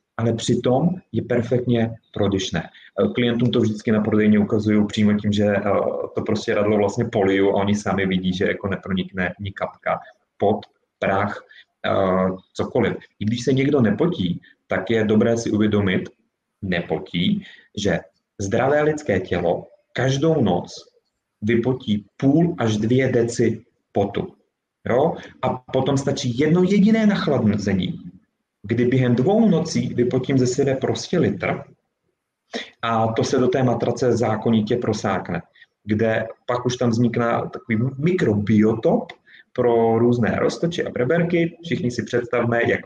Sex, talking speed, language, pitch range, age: male, 130 wpm, Czech, 105-135 Hz, 30-49